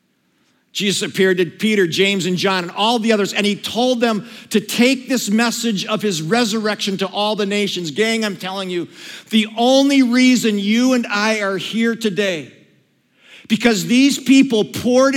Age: 50-69